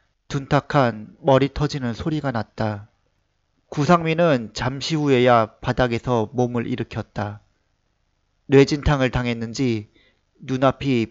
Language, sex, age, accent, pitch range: Korean, male, 40-59, native, 105-145 Hz